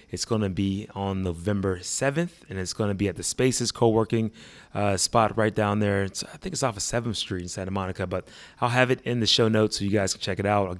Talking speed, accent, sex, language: 265 wpm, American, male, English